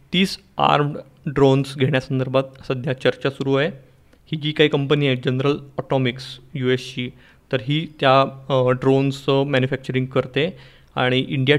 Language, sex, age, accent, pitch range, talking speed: Marathi, male, 30-49, native, 130-145 Hz, 130 wpm